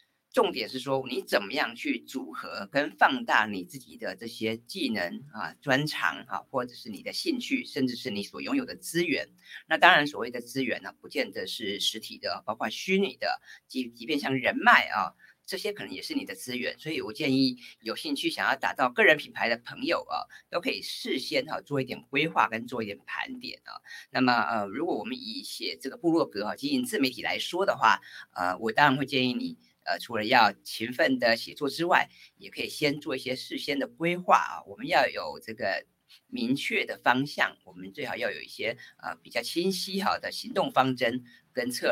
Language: Chinese